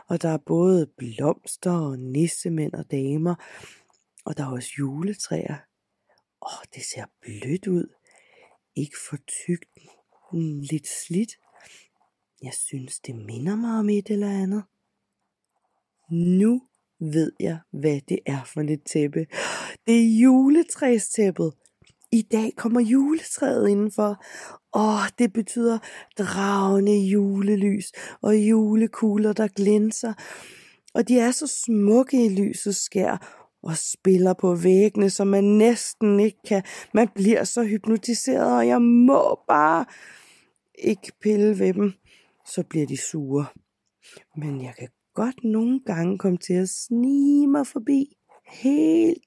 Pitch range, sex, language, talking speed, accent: 165-230 Hz, female, Danish, 130 wpm, native